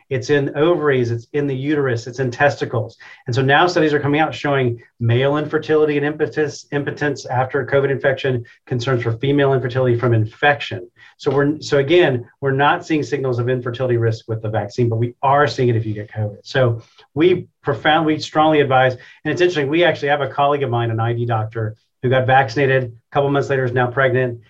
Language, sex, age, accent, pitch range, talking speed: English, male, 40-59, American, 125-150 Hz, 205 wpm